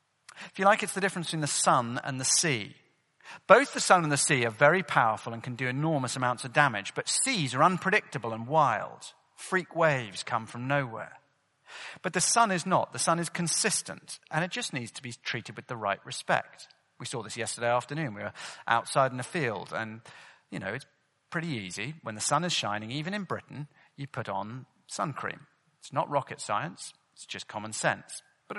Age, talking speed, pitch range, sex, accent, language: 40-59, 205 wpm, 110-155 Hz, male, British, English